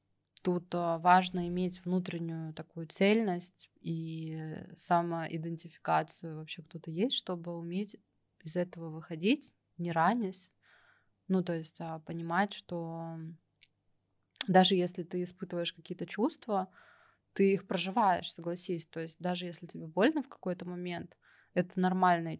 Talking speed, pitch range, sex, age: 120 wpm, 165-185 Hz, female, 20-39